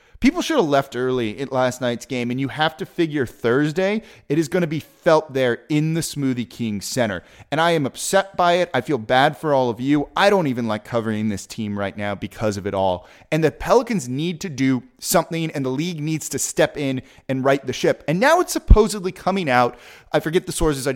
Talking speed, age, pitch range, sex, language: 235 wpm, 30-49, 120-165 Hz, male, English